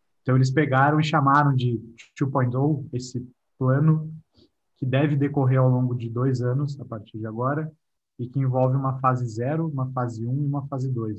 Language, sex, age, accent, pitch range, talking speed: Portuguese, male, 20-39, Brazilian, 115-135 Hz, 190 wpm